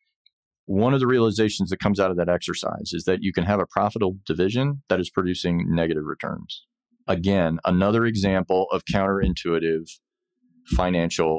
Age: 40-59